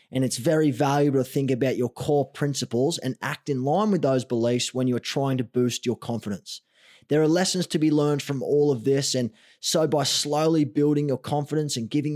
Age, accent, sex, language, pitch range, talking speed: 20-39, Australian, male, English, 135-160 Hz, 210 wpm